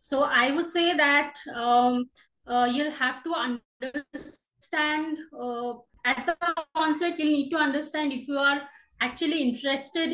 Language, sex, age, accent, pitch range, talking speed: English, female, 20-39, Indian, 245-290 Hz, 140 wpm